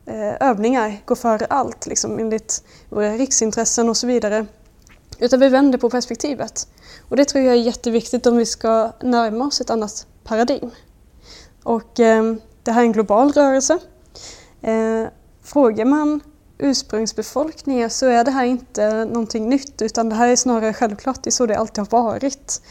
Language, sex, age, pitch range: Swedish, female, 20-39, 215-255 Hz